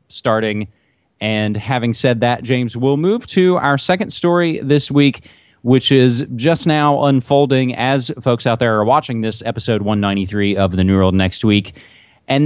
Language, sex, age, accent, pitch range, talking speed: English, male, 30-49, American, 120-155 Hz, 170 wpm